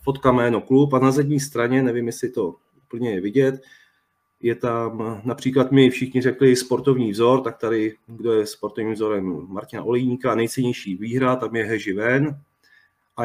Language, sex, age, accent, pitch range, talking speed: Czech, male, 30-49, native, 120-140 Hz, 165 wpm